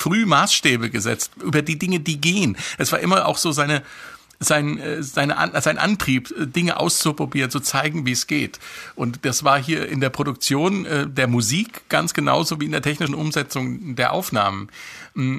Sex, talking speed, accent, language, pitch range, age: male, 170 wpm, German, German, 125-165 Hz, 50-69